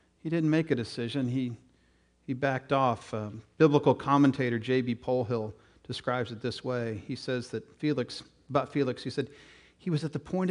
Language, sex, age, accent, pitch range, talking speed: English, male, 50-69, American, 100-140 Hz, 175 wpm